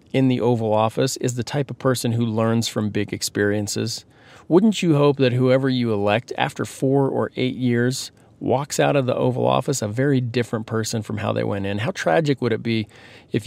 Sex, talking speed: male, 210 wpm